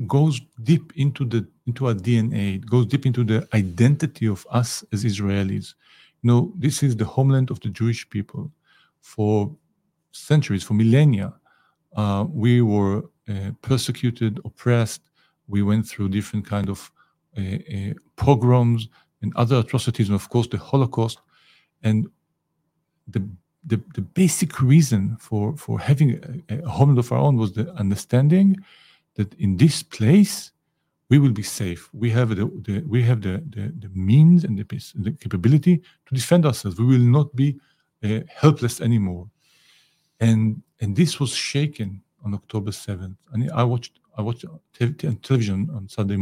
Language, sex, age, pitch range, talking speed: English, male, 50-69, 105-145 Hz, 160 wpm